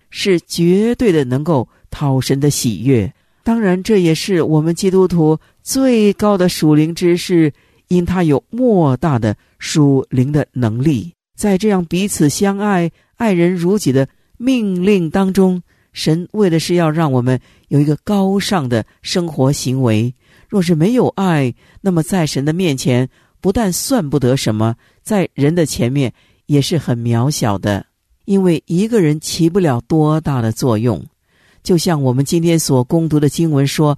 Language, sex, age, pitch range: Chinese, male, 50-69, 130-185 Hz